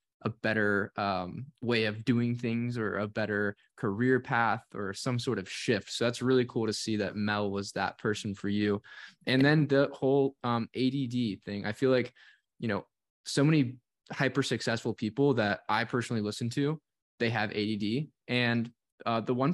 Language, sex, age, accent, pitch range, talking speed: English, male, 10-29, American, 110-130 Hz, 180 wpm